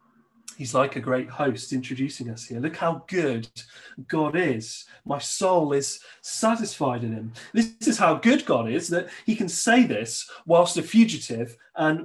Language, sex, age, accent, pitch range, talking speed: English, male, 30-49, British, 130-195 Hz, 170 wpm